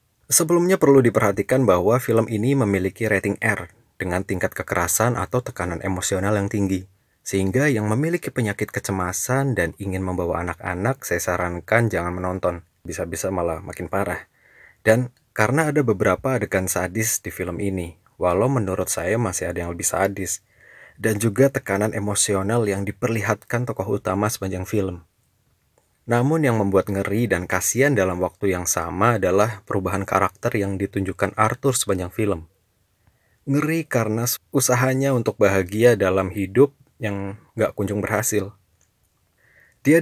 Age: 20-39